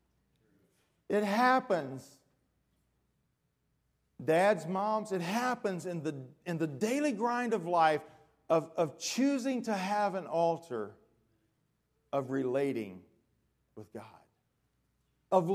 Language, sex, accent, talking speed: English, male, American, 100 wpm